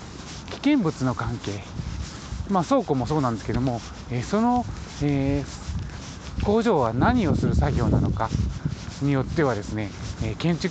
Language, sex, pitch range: Japanese, male, 105-160 Hz